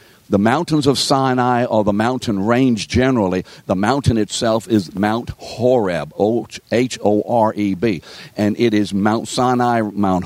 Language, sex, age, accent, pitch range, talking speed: English, male, 60-79, American, 95-115 Hz, 130 wpm